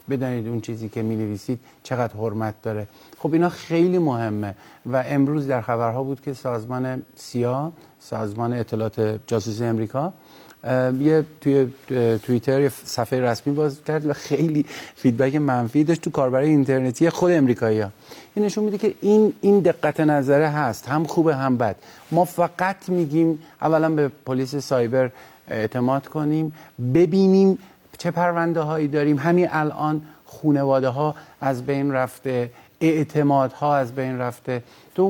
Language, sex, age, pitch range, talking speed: Persian, male, 50-69, 120-150 Hz, 145 wpm